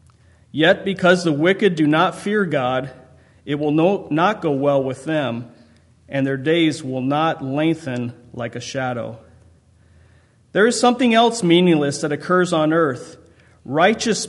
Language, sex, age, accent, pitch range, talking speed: English, male, 40-59, American, 130-175 Hz, 145 wpm